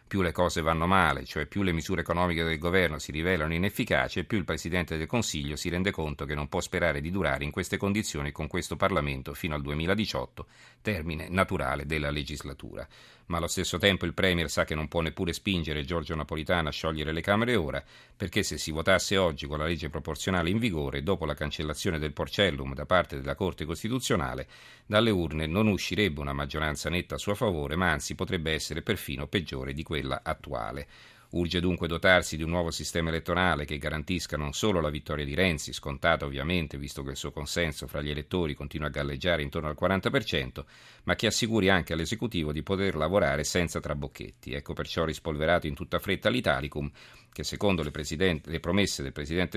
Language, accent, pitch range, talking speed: Italian, native, 75-95 Hz, 190 wpm